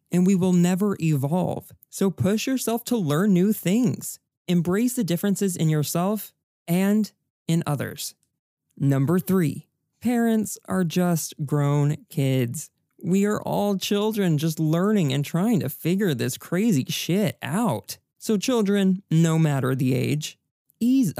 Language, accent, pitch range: English, American, 140-195 Hz